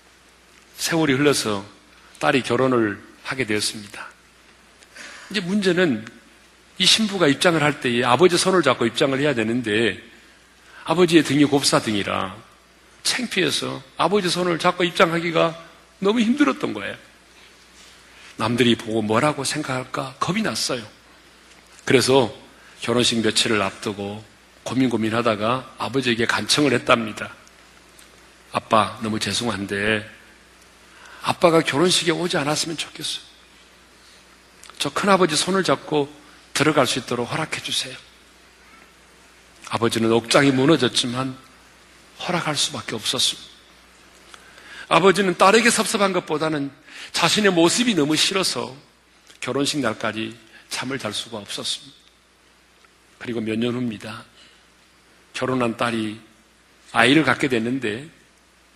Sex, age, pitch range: male, 40-59, 110-165 Hz